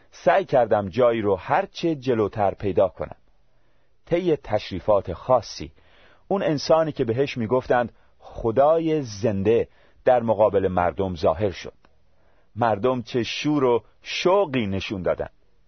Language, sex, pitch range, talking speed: Persian, male, 95-140 Hz, 120 wpm